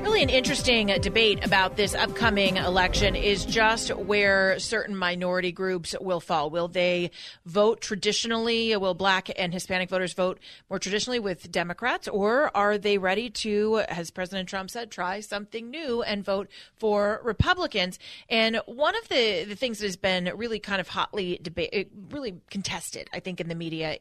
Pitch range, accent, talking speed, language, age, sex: 180-210 Hz, American, 165 wpm, English, 30-49, female